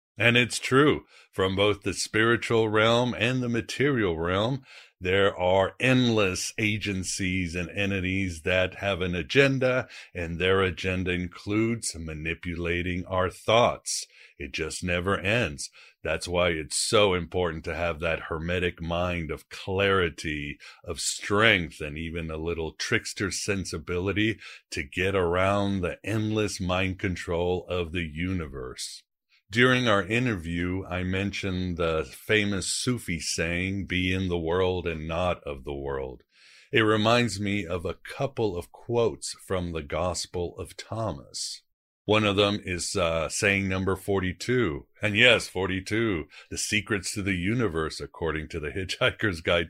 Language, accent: English, American